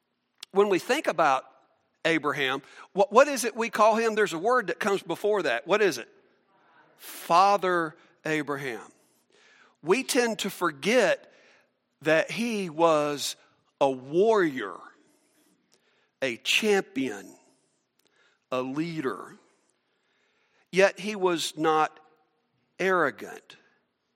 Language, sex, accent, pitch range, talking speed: English, male, American, 135-205 Hz, 100 wpm